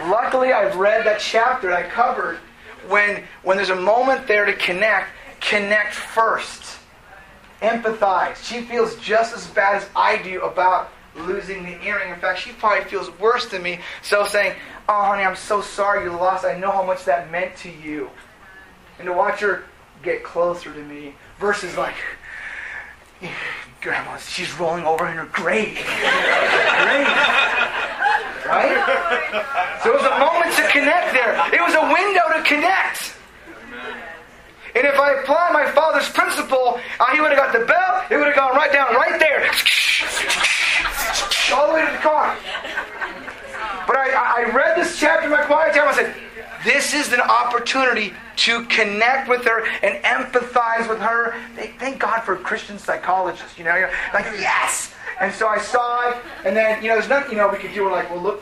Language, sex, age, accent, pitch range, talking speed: English, male, 30-49, American, 200-275 Hz, 175 wpm